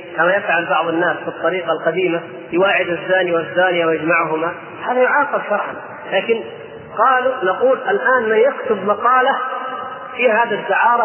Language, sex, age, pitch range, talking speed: Arabic, male, 30-49, 175-220 Hz, 130 wpm